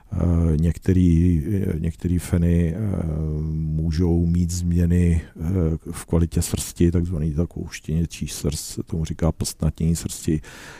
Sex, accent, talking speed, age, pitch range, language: male, native, 95 wpm, 50-69, 80-95 Hz, Czech